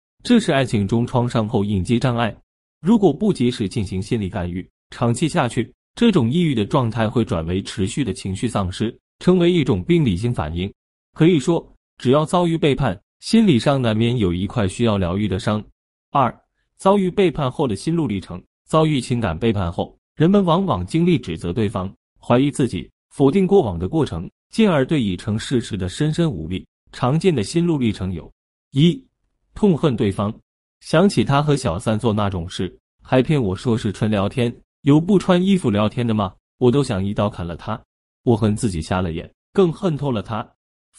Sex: male